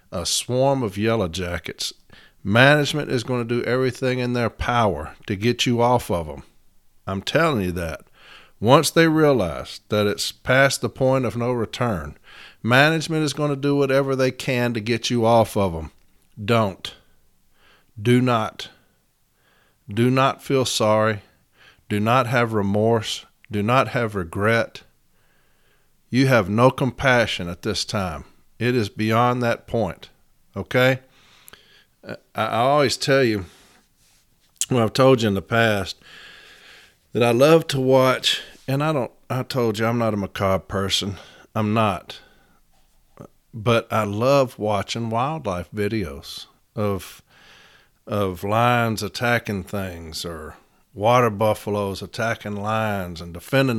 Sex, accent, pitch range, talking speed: male, American, 100-125 Hz, 140 wpm